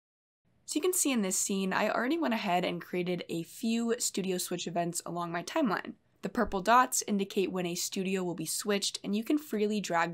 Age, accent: 20-39, American